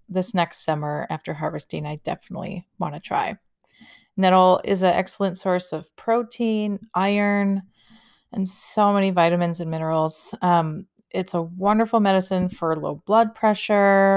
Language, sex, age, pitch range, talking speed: English, female, 30-49, 175-215 Hz, 140 wpm